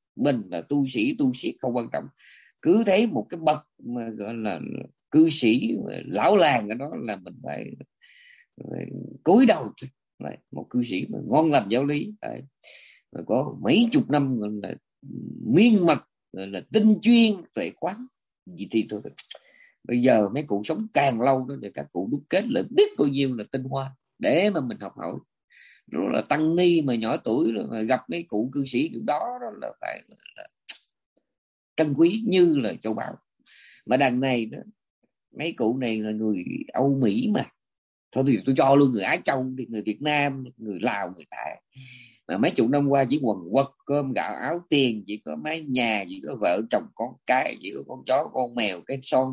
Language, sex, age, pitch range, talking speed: Vietnamese, male, 20-39, 115-160 Hz, 195 wpm